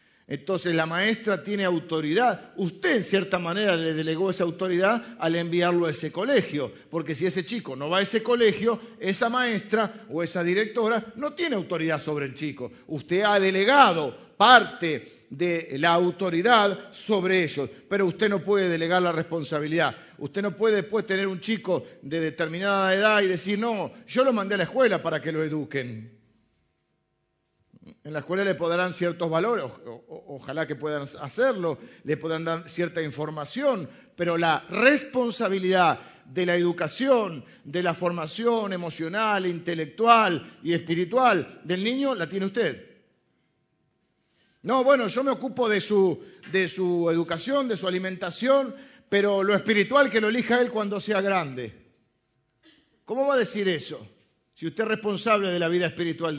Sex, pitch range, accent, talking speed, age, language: male, 160-215 Hz, Argentinian, 160 wpm, 50-69, Spanish